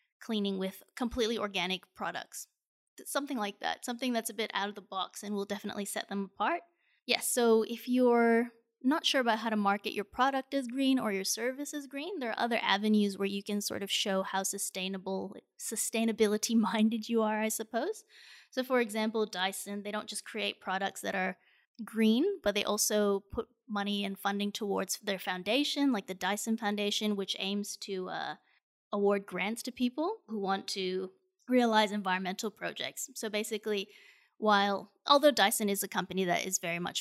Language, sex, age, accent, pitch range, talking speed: English, female, 20-39, American, 195-235 Hz, 180 wpm